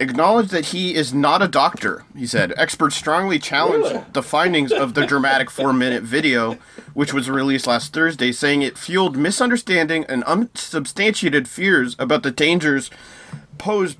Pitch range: 135-170 Hz